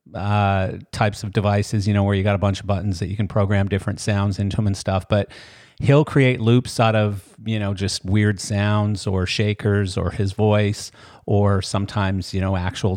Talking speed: 205 wpm